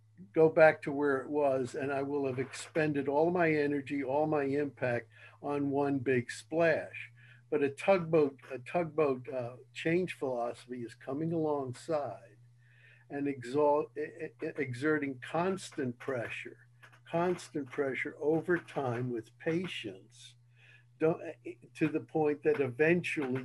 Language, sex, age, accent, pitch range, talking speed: English, male, 60-79, American, 125-150 Hz, 125 wpm